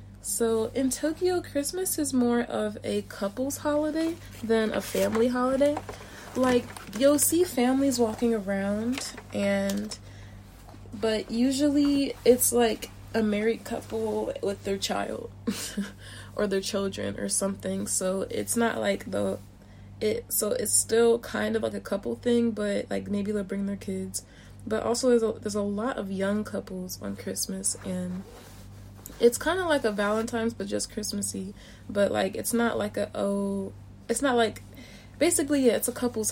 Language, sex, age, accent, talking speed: English, female, 20-39, American, 155 wpm